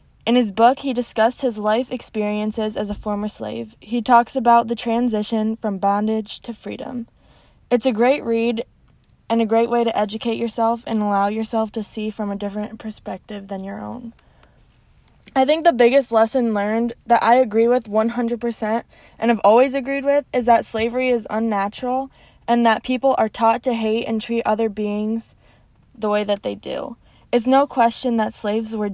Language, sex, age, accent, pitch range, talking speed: English, female, 20-39, American, 210-240 Hz, 180 wpm